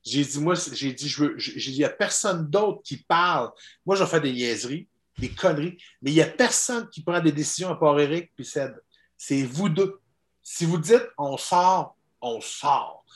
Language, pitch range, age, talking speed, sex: French, 125-180 Hz, 50-69, 195 wpm, male